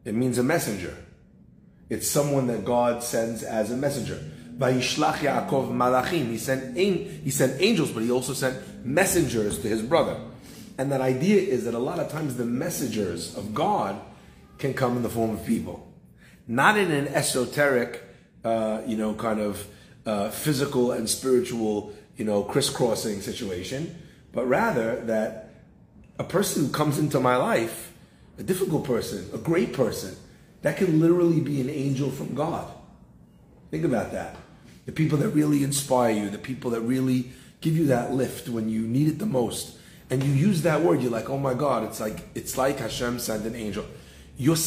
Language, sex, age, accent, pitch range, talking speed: English, male, 30-49, American, 110-145 Hz, 170 wpm